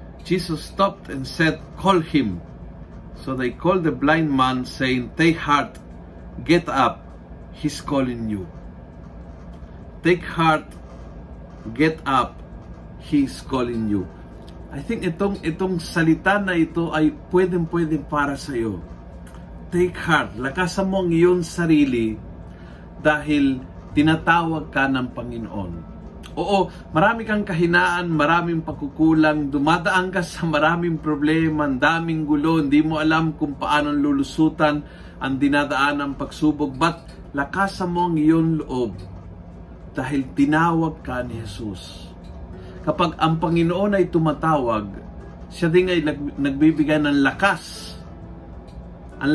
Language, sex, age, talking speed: Filipino, male, 50-69, 120 wpm